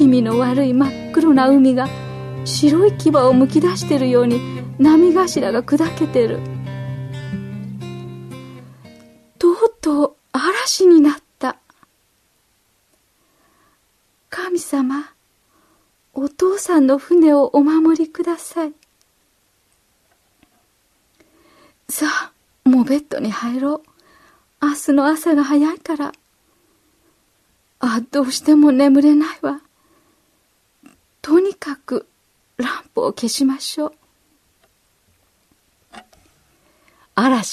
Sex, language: female, Japanese